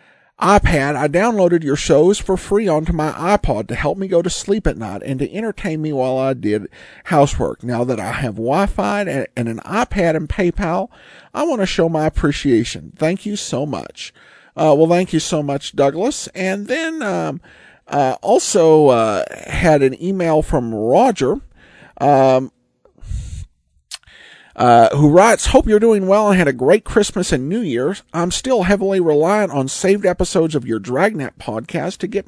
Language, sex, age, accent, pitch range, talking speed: English, male, 50-69, American, 135-190 Hz, 175 wpm